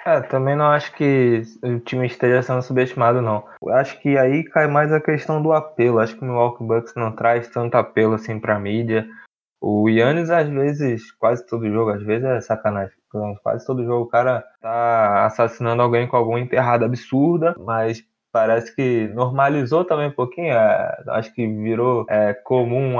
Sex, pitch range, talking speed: male, 115-140 Hz, 185 wpm